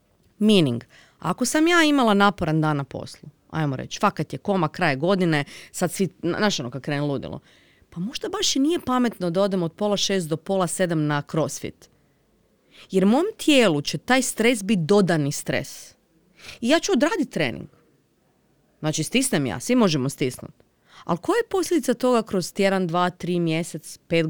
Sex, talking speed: female, 175 wpm